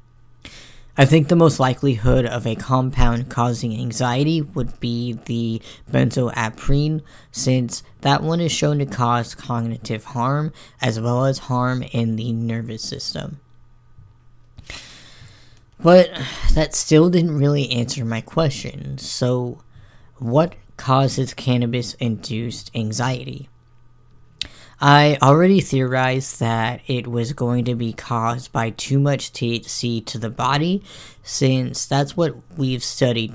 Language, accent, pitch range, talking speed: English, American, 115-135 Hz, 120 wpm